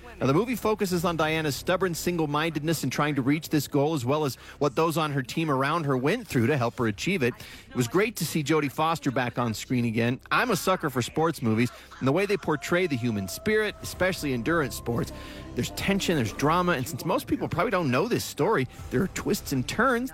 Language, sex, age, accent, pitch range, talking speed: English, male, 40-59, American, 125-180 Hz, 225 wpm